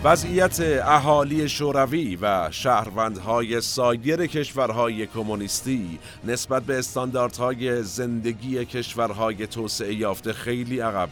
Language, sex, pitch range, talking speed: Persian, male, 100-125 Hz, 90 wpm